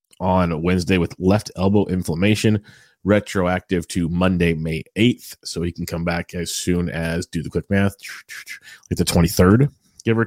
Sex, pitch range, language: male, 85-100 Hz, English